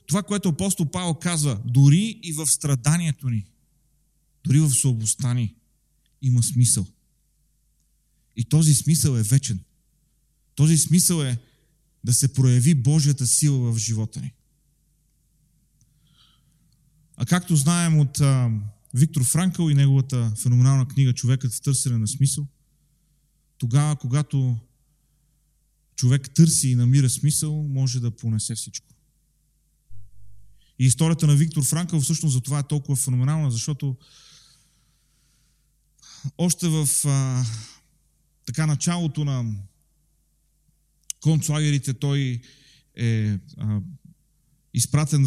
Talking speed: 105 wpm